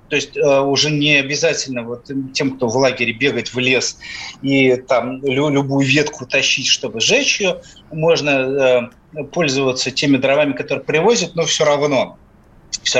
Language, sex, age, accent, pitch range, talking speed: Russian, male, 30-49, native, 135-175 Hz, 155 wpm